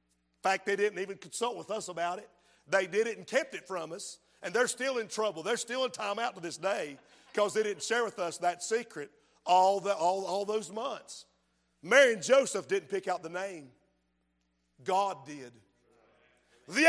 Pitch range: 175-245 Hz